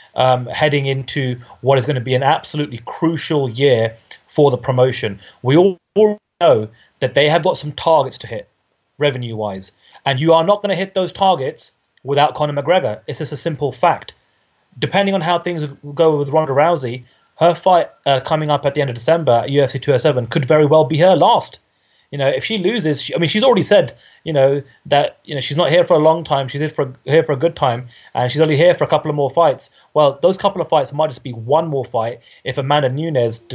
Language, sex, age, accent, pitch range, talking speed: English, male, 30-49, British, 130-165 Hz, 225 wpm